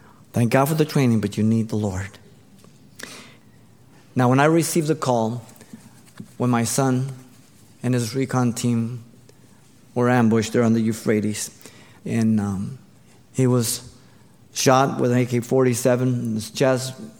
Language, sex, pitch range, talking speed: English, male, 110-130 Hz, 145 wpm